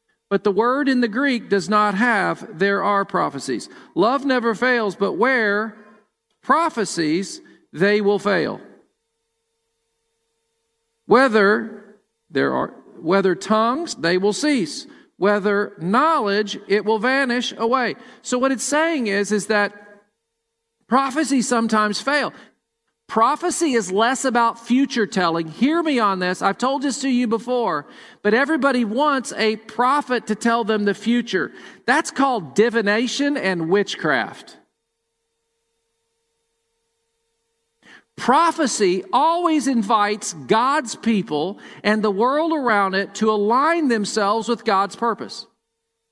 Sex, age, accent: male, 50-69, American